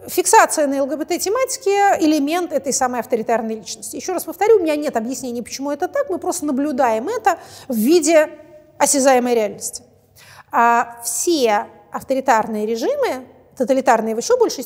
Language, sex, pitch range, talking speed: Russian, female, 235-330 Hz, 140 wpm